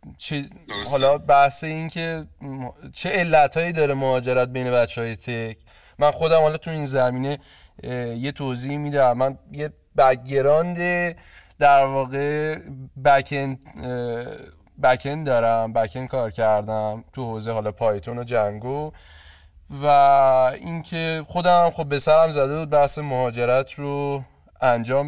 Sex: male